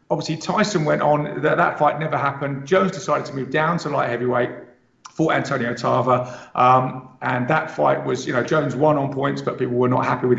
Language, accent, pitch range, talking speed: English, British, 130-170 Hz, 215 wpm